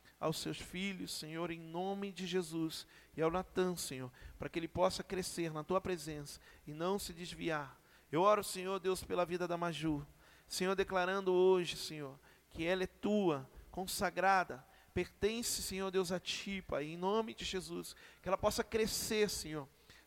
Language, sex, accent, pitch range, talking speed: Portuguese, male, Brazilian, 165-205 Hz, 165 wpm